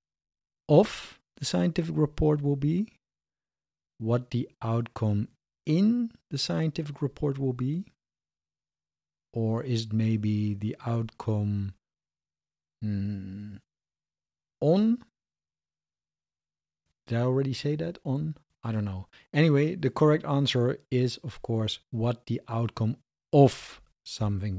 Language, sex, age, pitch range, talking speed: English, male, 50-69, 105-135 Hz, 105 wpm